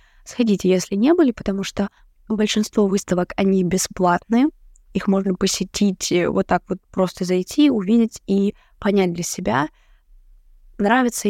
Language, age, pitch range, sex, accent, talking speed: Russian, 20-39, 180-210 Hz, female, native, 125 wpm